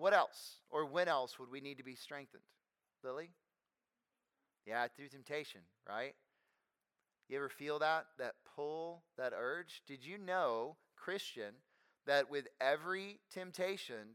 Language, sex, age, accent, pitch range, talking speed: English, male, 30-49, American, 140-190 Hz, 135 wpm